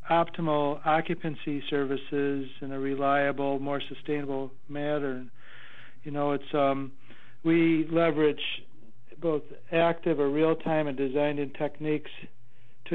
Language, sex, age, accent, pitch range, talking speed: English, male, 60-79, American, 135-160 Hz, 105 wpm